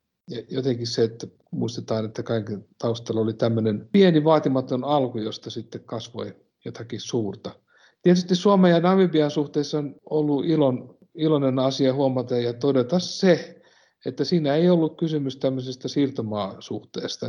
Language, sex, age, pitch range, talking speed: Finnish, male, 60-79, 115-140 Hz, 135 wpm